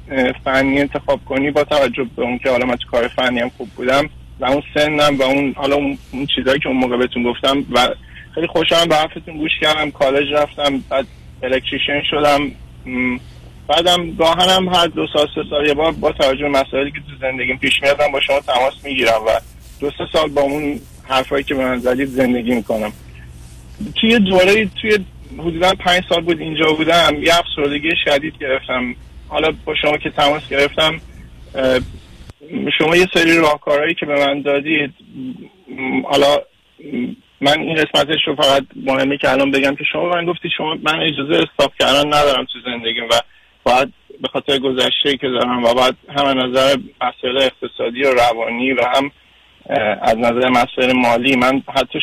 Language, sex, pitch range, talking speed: Persian, male, 125-155 Hz, 165 wpm